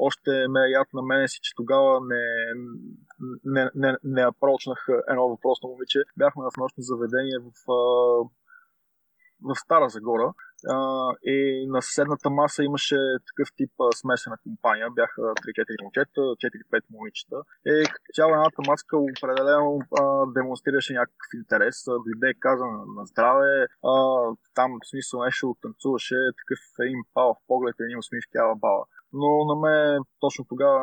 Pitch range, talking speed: 125-145 Hz, 135 wpm